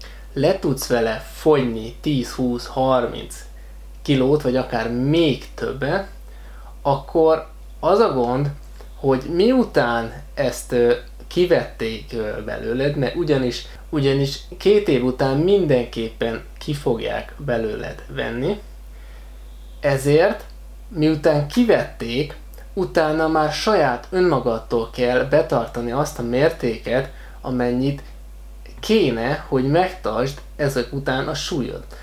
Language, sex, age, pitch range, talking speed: Hungarian, male, 20-39, 115-150 Hz, 90 wpm